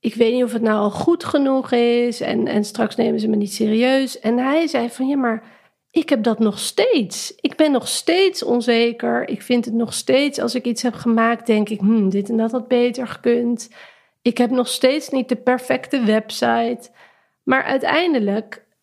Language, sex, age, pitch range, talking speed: Dutch, female, 40-59, 215-260 Hz, 200 wpm